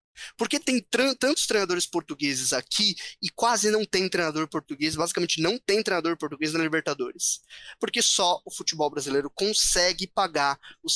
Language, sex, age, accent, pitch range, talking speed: Portuguese, male, 20-39, Brazilian, 150-195 Hz, 150 wpm